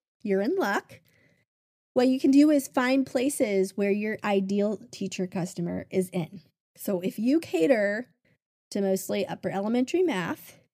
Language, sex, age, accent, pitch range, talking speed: English, female, 20-39, American, 185-230 Hz, 145 wpm